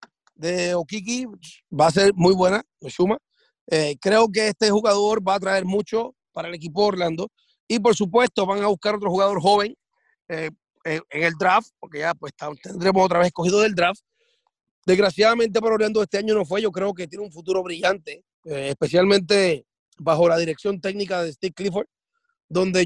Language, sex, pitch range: English, male, 180-220 Hz